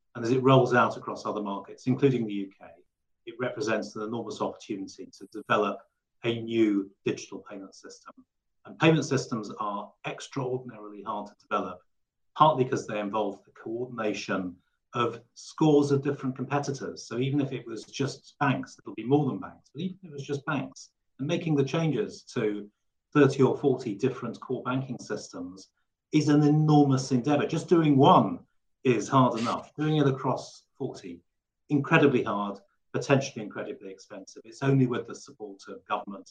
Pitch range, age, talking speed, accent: 105-145 Hz, 40-59, 165 wpm, British